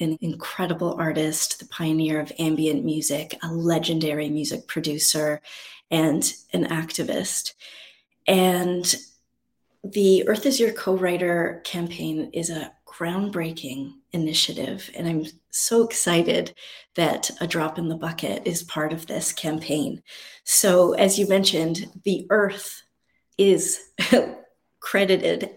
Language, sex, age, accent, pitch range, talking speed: English, female, 30-49, American, 160-190 Hz, 115 wpm